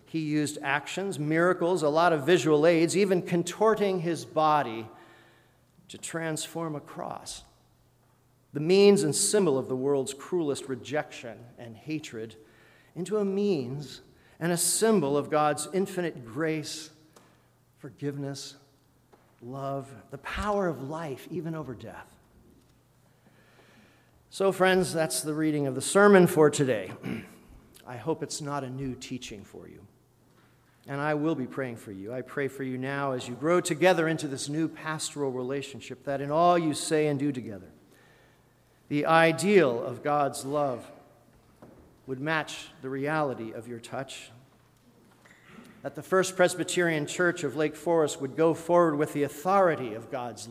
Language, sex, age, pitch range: English, male, 40-59, 130-165 Hz